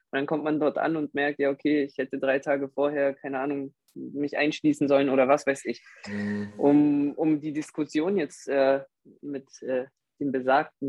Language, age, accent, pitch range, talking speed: German, 20-39, German, 135-155 Hz, 180 wpm